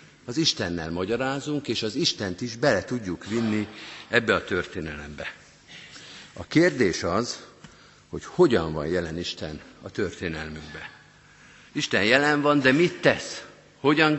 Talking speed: 125 wpm